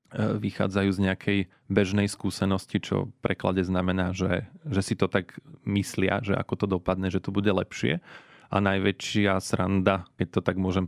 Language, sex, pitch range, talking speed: Slovak, male, 95-110 Hz, 165 wpm